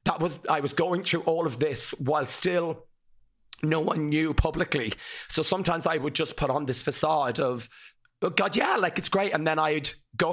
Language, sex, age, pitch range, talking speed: English, male, 30-49, 140-165 Hz, 205 wpm